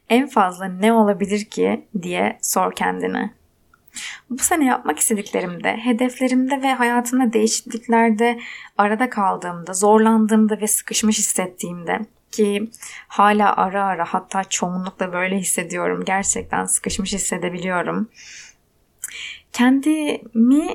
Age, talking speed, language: 20-39, 100 wpm, Turkish